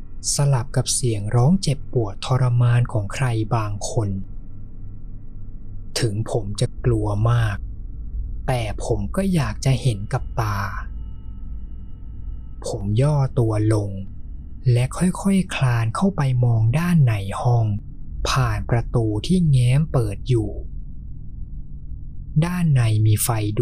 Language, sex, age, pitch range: Thai, male, 20-39, 100-130 Hz